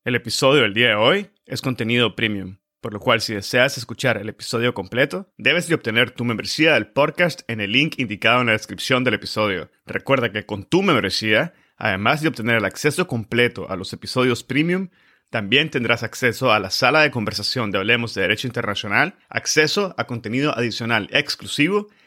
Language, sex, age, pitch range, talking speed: Spanish, male, 30-49, 110-140 Hz, 180 wpm